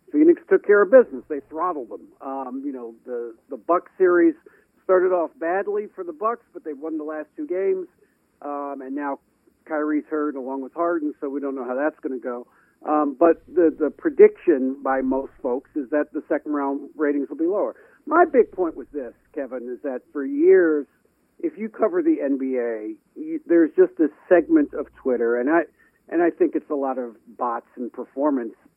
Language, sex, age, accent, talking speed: English, male, 50-69, American, 200 wpm